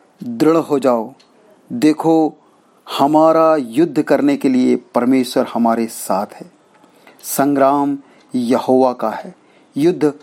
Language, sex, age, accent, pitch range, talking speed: Hindi, male, 40-59, native, 125-155 Hz, 105 wpm